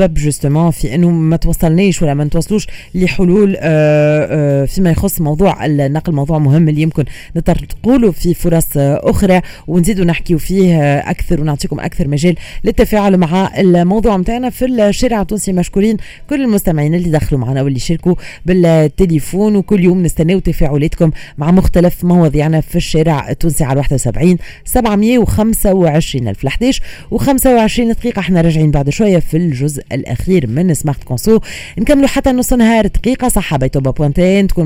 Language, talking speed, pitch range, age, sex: Arabic, 140 wpm, 145-195 Hz, 30-49, female